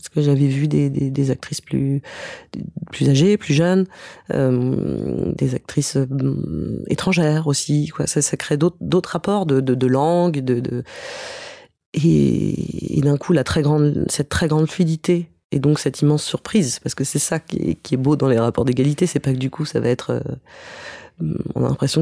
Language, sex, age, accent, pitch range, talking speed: French, female, 30-49, French, 135-170 Hz, 200 wpm